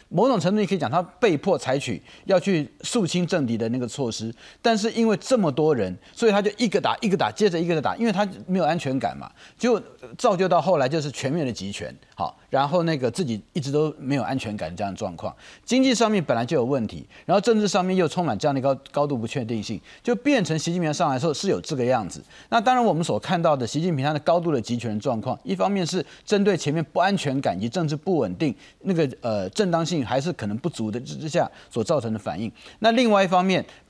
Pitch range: 135-195 Hz